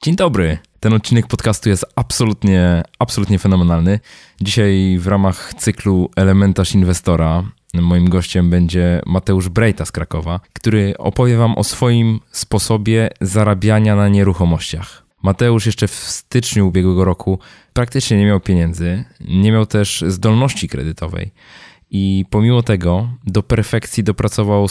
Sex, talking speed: male, 125 wpm